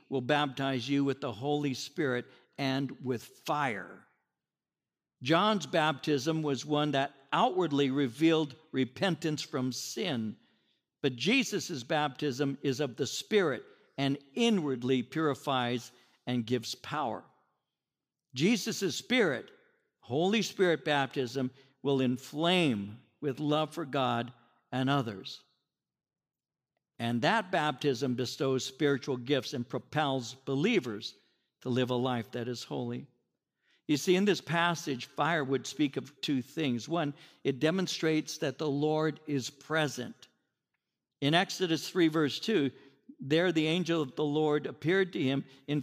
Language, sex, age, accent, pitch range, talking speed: English, male, 60-79, American, 135-160 Hz, 125 wpm